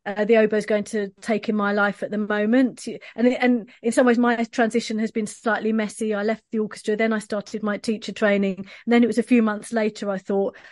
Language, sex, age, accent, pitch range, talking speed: English, female, 30-49, British, 205-230 Hz, 245 wpm